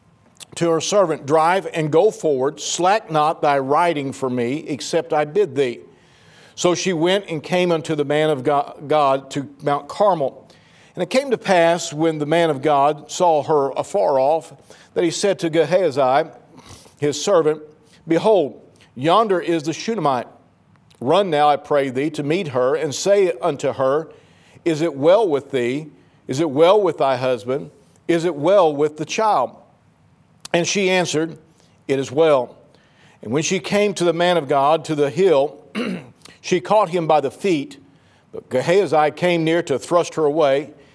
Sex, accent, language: male, American, English